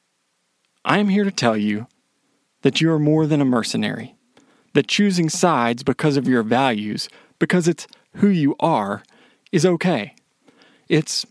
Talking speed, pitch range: 150 wpm, 120-190 Hz